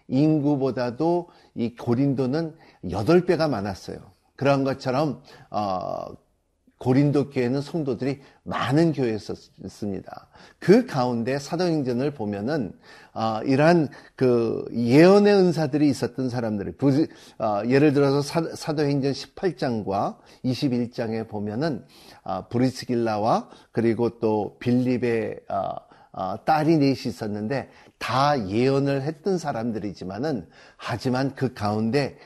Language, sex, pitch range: Korean, male, 120-170 Hz